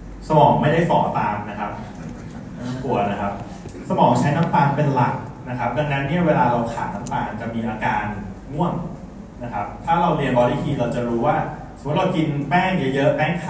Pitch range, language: 120-150 Hz, Thai